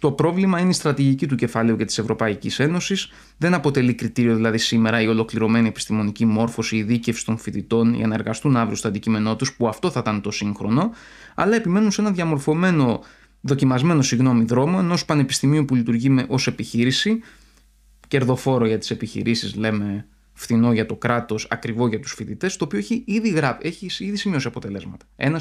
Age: 20-39